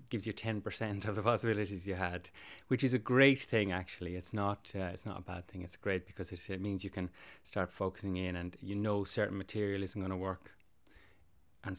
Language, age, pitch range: English, 30-49, 95-110 Hz